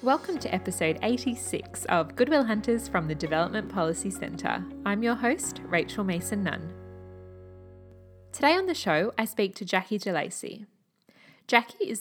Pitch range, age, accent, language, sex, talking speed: 175-235 Hz, 20-39, Australian, English, female, 140 wpm